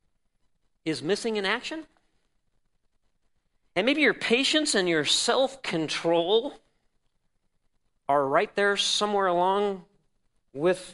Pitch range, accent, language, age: 200-310 Hz, American, English, 40-59